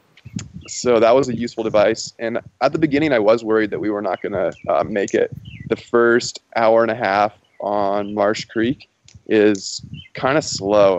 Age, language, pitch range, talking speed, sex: 20-39, English, 100-120 Hz, 185 wpm, male